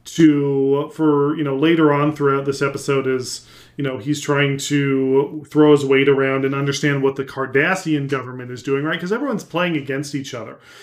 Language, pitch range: English, 135-155 Hz